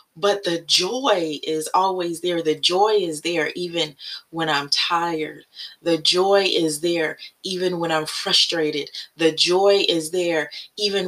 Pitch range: 155-215 Hz